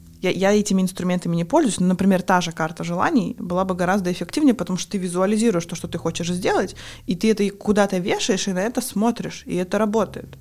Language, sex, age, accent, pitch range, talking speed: Russian, female, 20-39, native, 175-210 Hz, 215 wpm